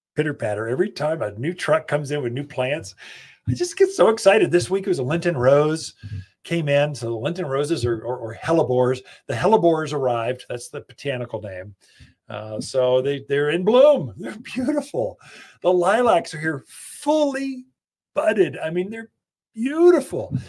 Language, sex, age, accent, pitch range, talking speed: English, male, 40-59, American, 130-190 Hz, 170 wpm